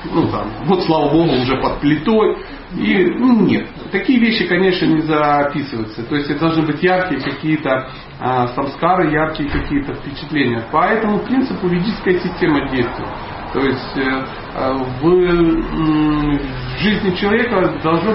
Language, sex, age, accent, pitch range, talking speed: Russian, male, 40-59, native, 130-195 Hz, 140 wpm